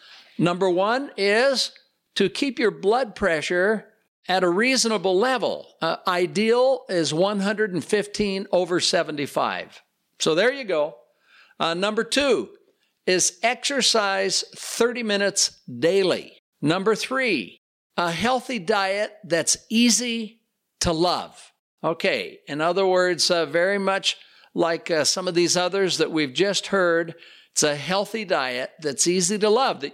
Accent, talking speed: American, 130 wpm